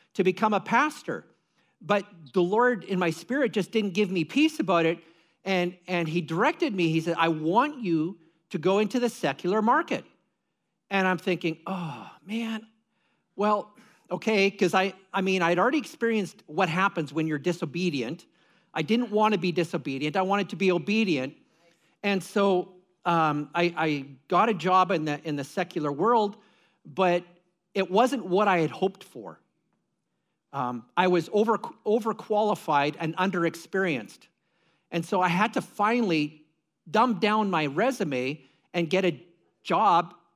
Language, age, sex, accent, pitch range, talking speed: English, 50-69, male, American, 170-215 Hz, 160 wpm